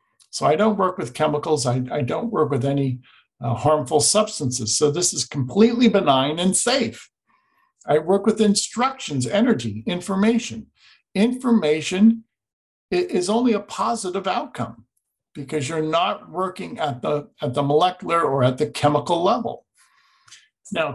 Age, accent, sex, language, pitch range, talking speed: 50-69, American, male, Danish, 145-225 Hz, 140 wpm